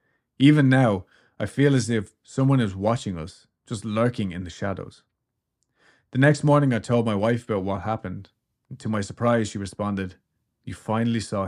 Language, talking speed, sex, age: English, 175 wpm, male, 30-49